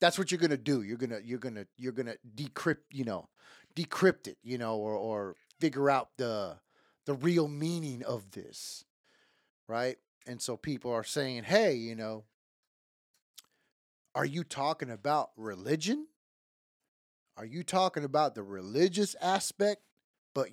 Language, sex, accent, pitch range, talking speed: English, male, American, 110-155 Hz, 160 wpm